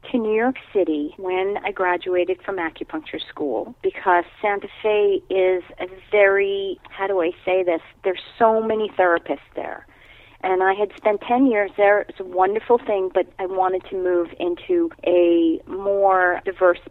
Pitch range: 175-210 Hz